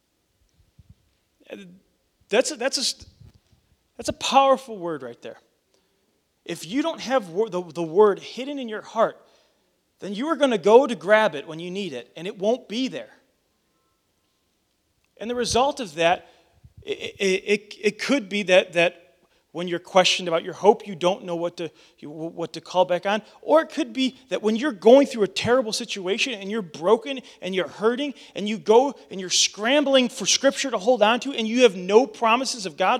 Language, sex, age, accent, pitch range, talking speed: English, male, 30-49, American, 180-245 Hz, 190 wpm